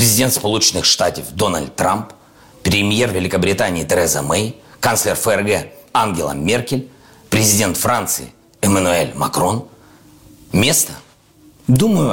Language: Russian